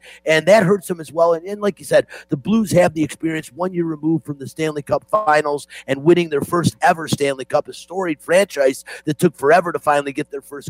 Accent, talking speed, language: American, 235 wpm, English